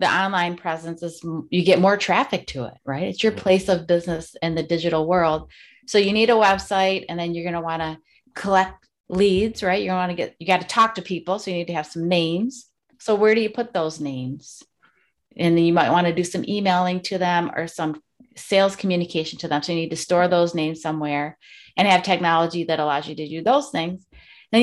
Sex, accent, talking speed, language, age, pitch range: female, American, 230 wpm, English, 30-49, 165-195 Hz